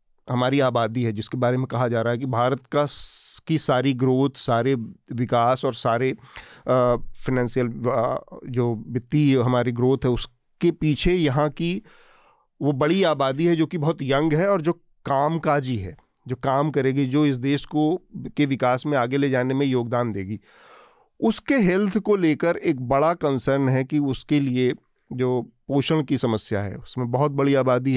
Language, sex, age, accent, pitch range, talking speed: Hindi, male, 40-59, native, 125-155 Hz, 170 wpm